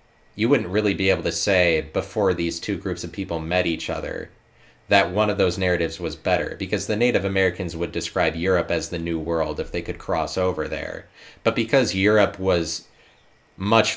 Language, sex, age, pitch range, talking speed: English, male, 30-49, 85-105 Hz, 195 wpm